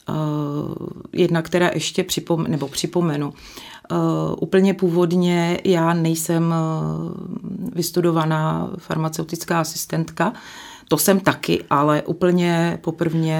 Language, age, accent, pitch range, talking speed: Czech, 30-49, native, 160-180 Hz, 75 wpm